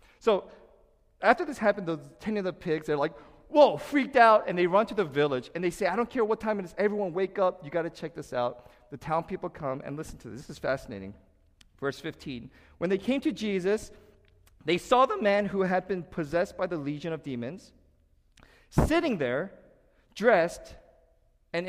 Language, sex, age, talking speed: English, male, 40-59, 205 wpm